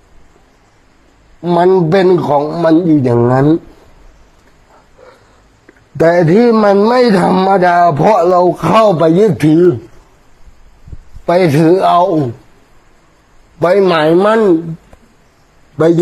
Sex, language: male, Thai